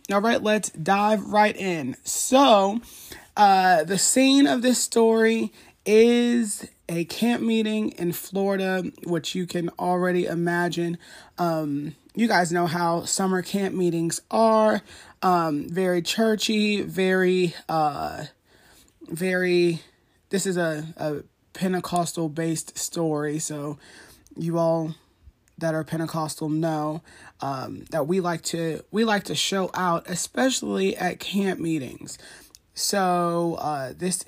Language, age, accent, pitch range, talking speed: English, 20-39, American, 160-195 Hz, 125 wpm